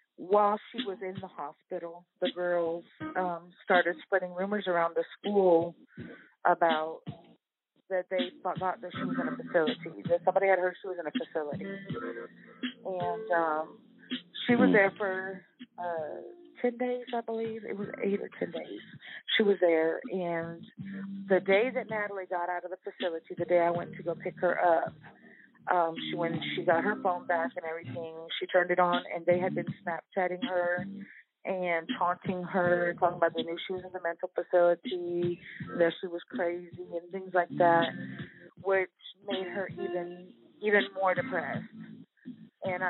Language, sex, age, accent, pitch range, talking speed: English, female, 30-49, American, 175-205 Hz, 170 wpm